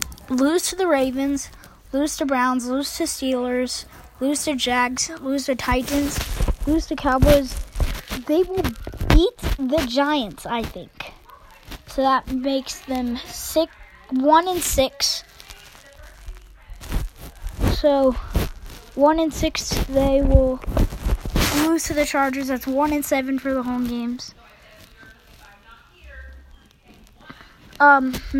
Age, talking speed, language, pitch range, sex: 20-39, 110 wpm, English, 260-290 Hz, female